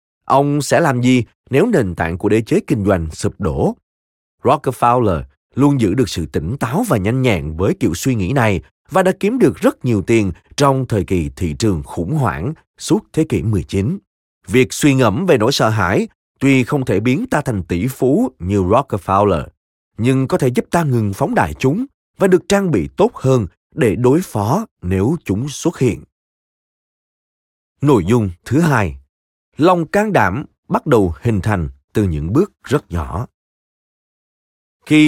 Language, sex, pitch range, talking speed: Vietnamese, male, 90-135 Hz, 175 wpm